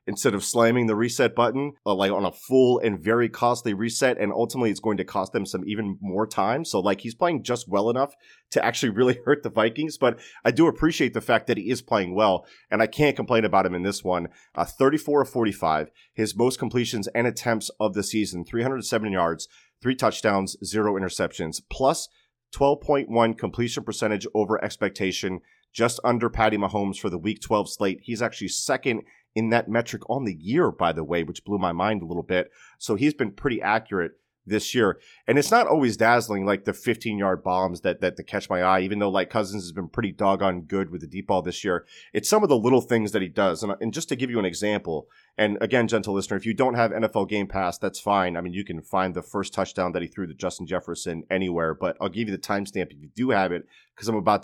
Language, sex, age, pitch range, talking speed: English, male, 30-49, 95-115 Hz, 230 wpm